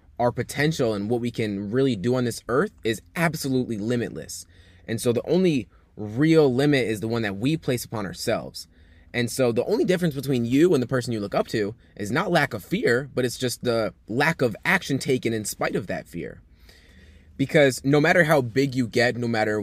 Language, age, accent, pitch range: English, 20-39, American, 100-135 Hz